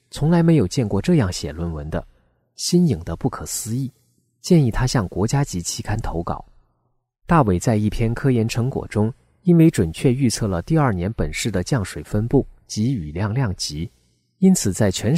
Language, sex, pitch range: Chinese, male, 90-135 Hz